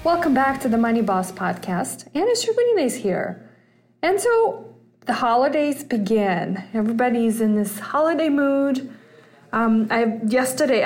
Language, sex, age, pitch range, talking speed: English, female, 20-39, 205-255 Hz, 135 wpm